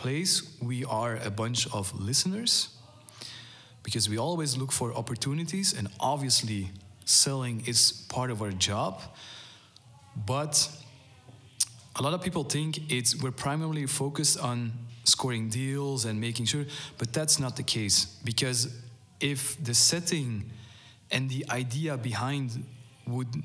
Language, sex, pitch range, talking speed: English, male, 110-130 Hz, 130 wpm